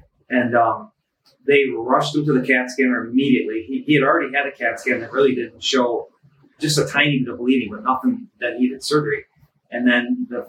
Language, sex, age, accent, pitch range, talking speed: English, male, 30-49, American, 120-145 Hz, 205 wpm